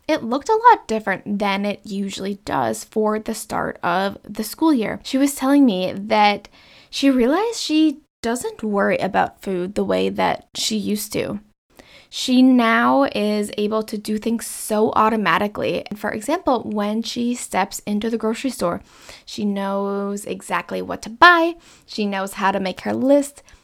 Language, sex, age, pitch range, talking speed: English, female, 10-29, 200-260 Hz, 165 wpm